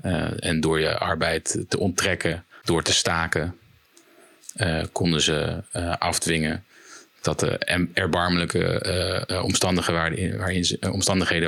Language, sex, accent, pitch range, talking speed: Dutch, male, Dutch, 80-90 Hz, 105 wpm